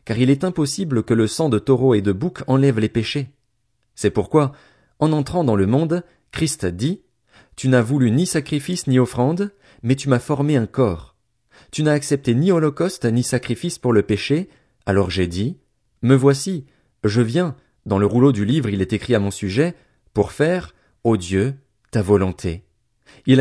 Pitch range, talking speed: 105-145 Hz, 185 wpm